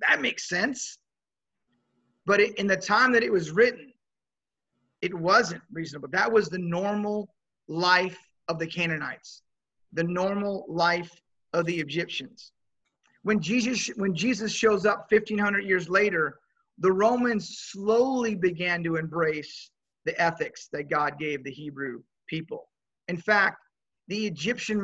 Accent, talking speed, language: American, 135 wpm, English